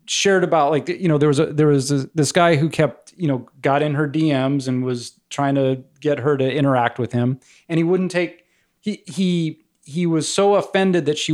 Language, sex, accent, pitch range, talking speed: English, male, American, 125-170 Hz, 230 wpm